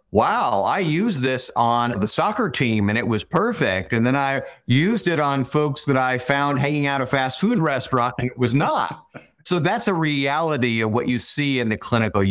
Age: 50-69